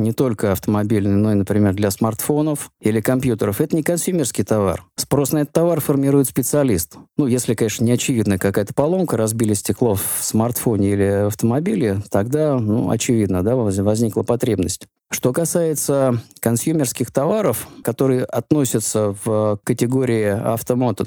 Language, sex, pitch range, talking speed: Russian, male, 110-145 Hz, 135 wpm